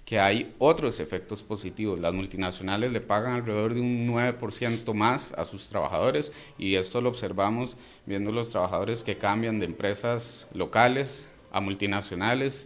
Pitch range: 100-125 Hz